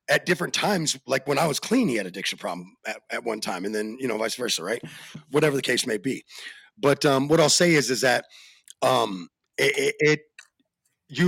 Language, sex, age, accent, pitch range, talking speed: English, male, 30-49, American, 120-150 Hz, 220 wpm